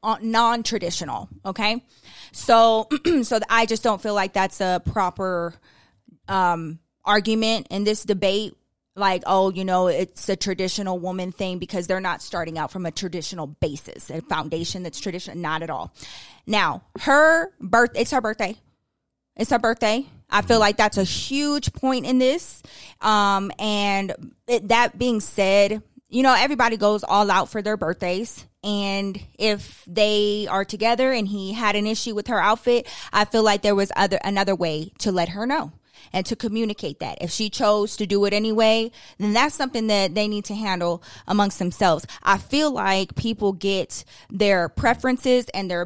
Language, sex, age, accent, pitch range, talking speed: English, female, 20-39, American, 190-230 Hz, 170 wpm